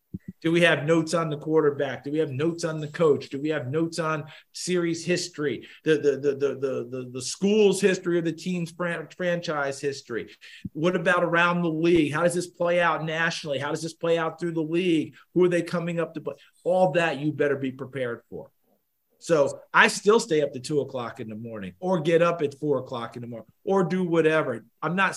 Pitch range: 140-170 Hz